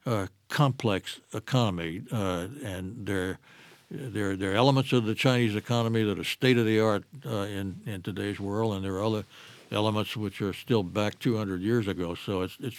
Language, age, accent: English, 60-79, American